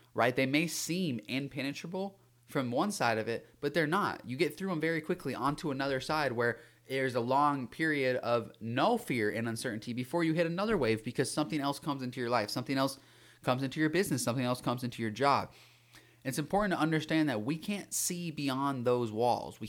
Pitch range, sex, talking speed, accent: 120-155 Hz, male, 205 wpm, American